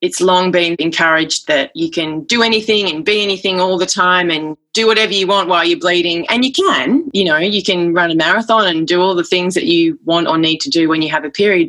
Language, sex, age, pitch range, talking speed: English, female, 20-39, 160-205 Hz, 255 wpm